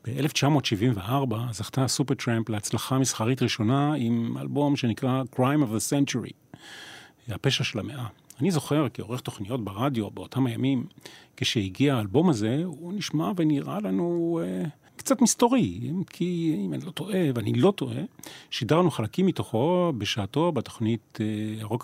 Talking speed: 130 wpm